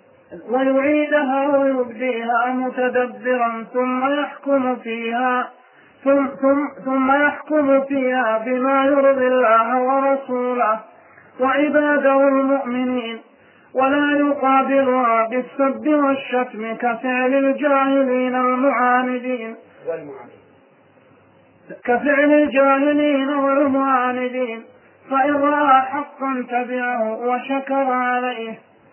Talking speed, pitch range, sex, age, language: 70 wpm, 250-275 Hz, male, 20-39, Arabic